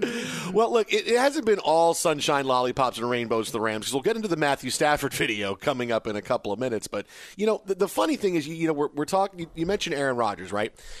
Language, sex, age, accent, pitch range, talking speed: English, male, 40-59, American, 125-165 Hz, 265 wpm